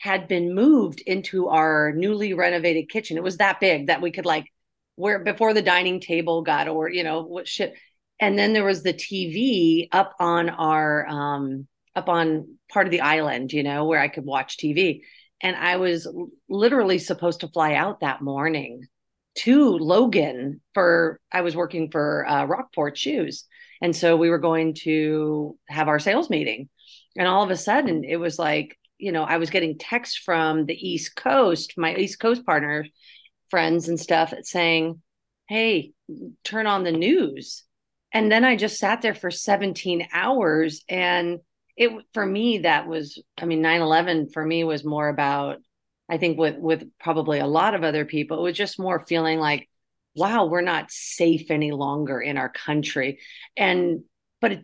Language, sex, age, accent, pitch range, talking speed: English, female, 40-59, American, 155-195 Hz, 180 wpm